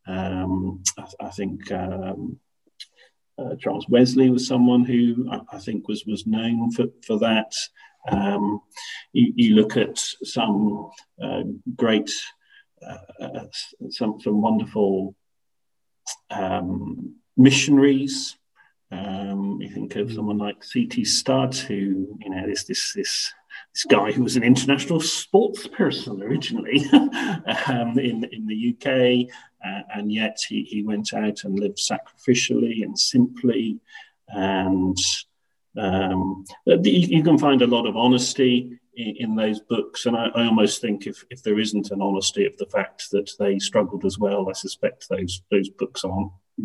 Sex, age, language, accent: male, 50-69, English, British